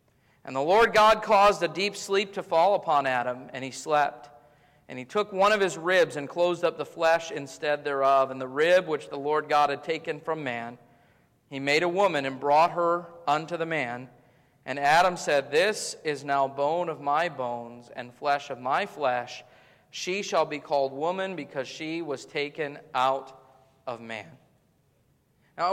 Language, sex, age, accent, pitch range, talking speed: English, male, 40-59, American, 135-190 Hz, 180 wpm